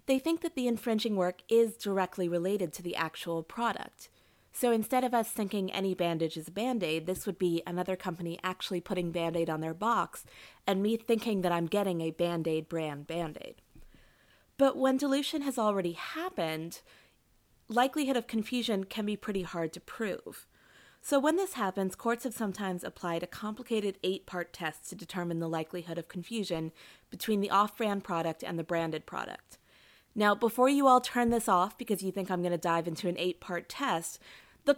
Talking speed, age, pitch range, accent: 190 wpm, 30-49, 175-235 Hz, American